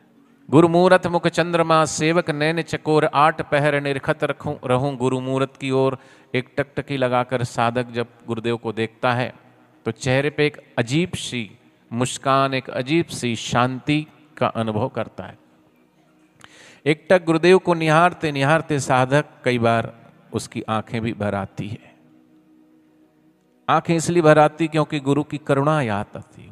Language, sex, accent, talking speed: Hindi, male, native, 145 wpm